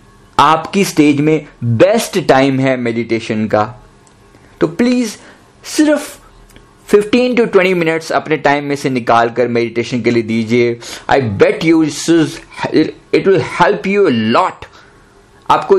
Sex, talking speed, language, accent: male, 135 wpm, Hindi, native